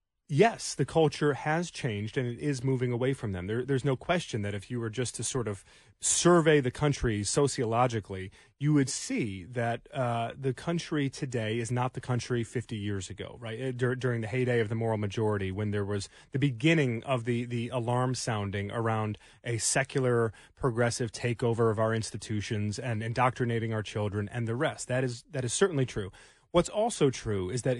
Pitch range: 115-145 Hz